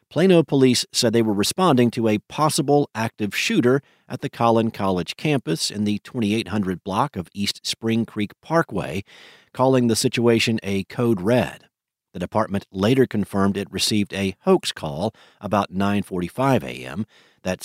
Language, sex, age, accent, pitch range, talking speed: English, male, 50-69, American, 100-120 Hz, 150 wpm